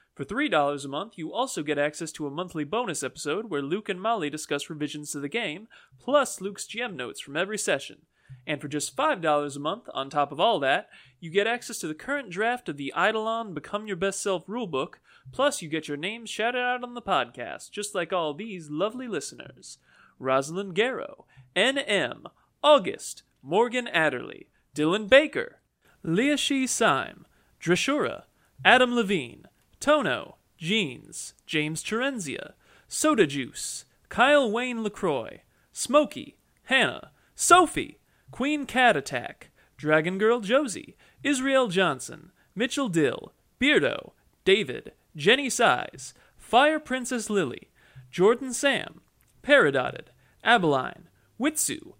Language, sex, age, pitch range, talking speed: English, male, 30-49, 155-260 Hz, 135 wpm